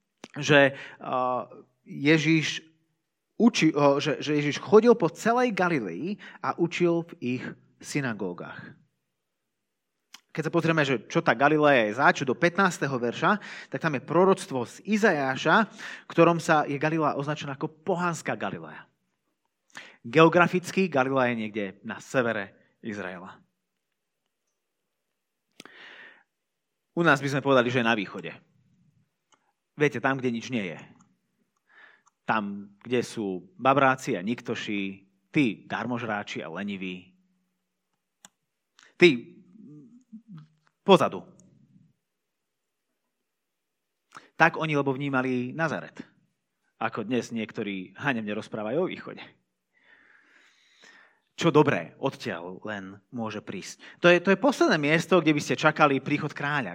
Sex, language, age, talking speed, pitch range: male, Slovak, 30-49, 110 wpm, 120-170 Hz